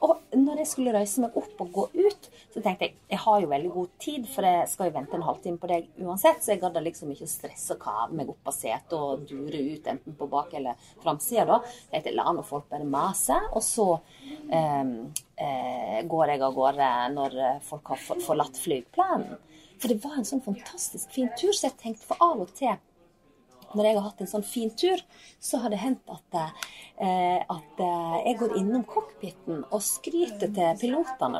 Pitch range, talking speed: 160-250 Hz, 210 wpm